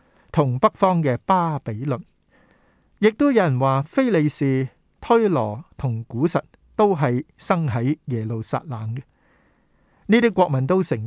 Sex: male